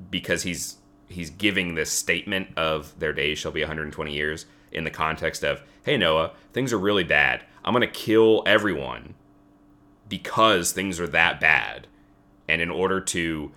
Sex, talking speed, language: male, 165 wpm, English